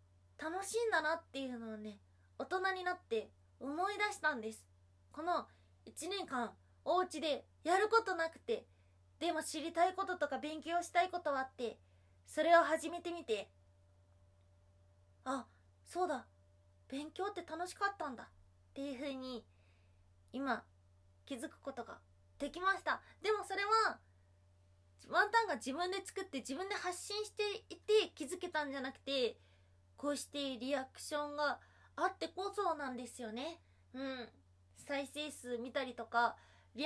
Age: 20-39